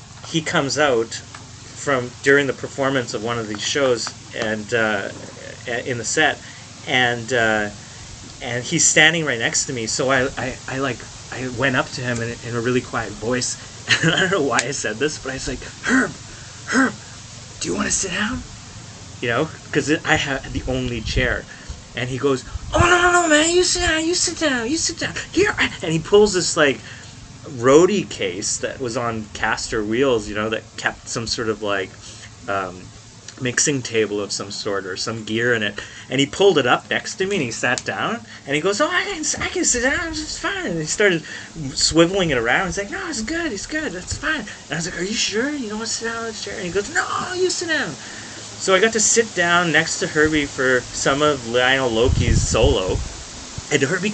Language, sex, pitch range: English, male, 115-175 Hz